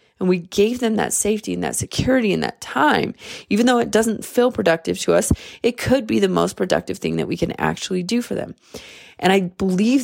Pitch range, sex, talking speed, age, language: 175-215 Hz, female, 220 wpm, 20-39, English